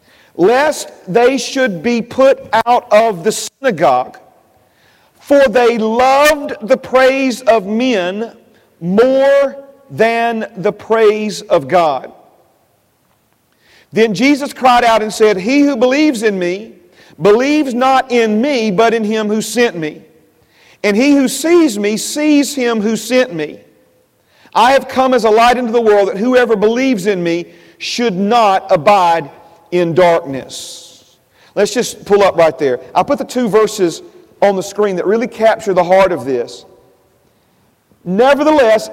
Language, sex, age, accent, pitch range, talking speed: English, male, 40-59, American, 205-260 Hz, 145 wpm